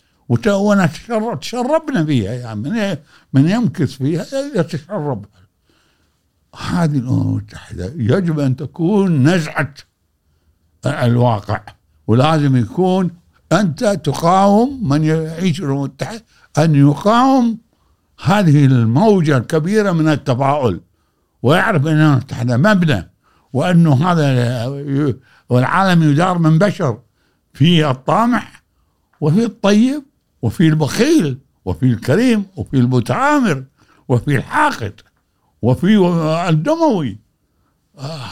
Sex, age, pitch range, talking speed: male, 60-79, 125-170 Hz, 90 wpm